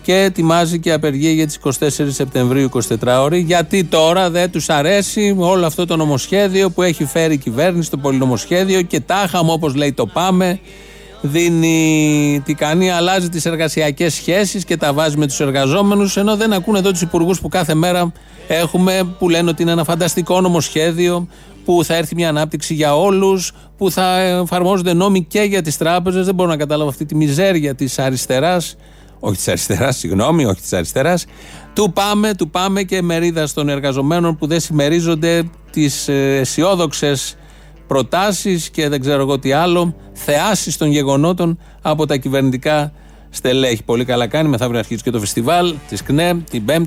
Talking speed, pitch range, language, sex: 170 wpm, 135-180 Hz, Greek, male